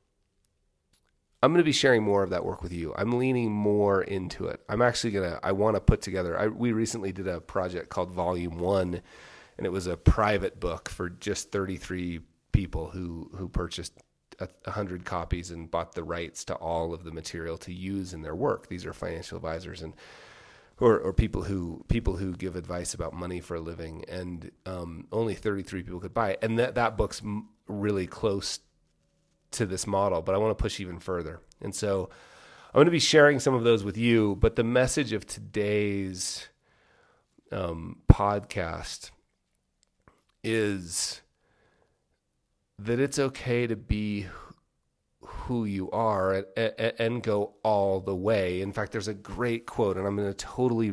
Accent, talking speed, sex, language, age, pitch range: American, 180 wpm, male, English, 30-49, 90-110 Hz